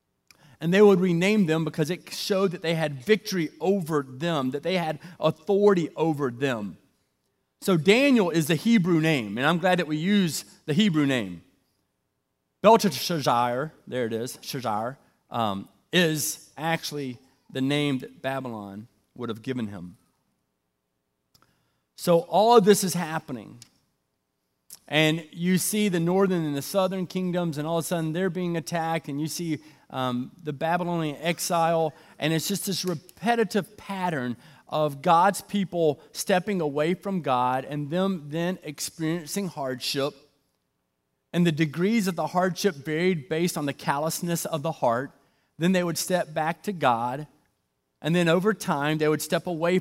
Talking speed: 155 wpm